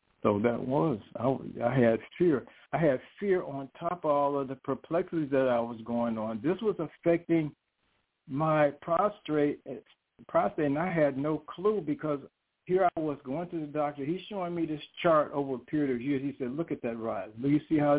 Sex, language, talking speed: male, English, 205 wpm